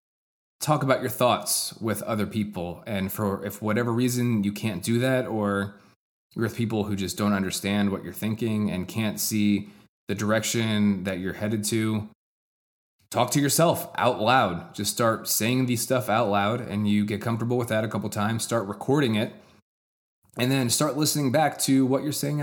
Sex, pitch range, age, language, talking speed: male, 105-130 Hz, 20-39, English, 185 wpm